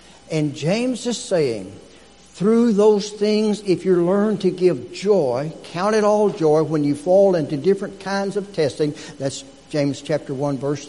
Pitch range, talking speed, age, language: 160-220 Hz, 165 wpm, 60-79, English